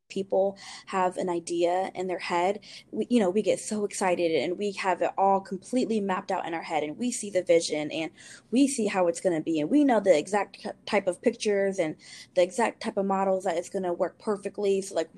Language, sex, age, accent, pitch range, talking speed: English, female, 20-39, American, 180-210 Hz, 235 wpm